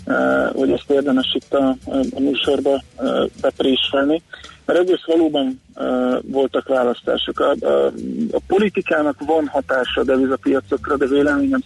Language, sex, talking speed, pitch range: Hungarian, male, 140 wpm, 125-155 Hz